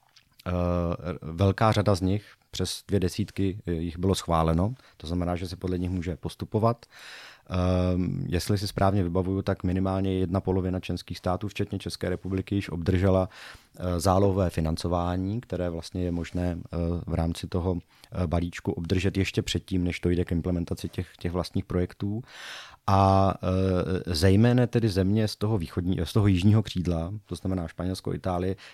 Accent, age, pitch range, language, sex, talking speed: native, 30-49, 90-100 Hz, Czech, male, 140 wpm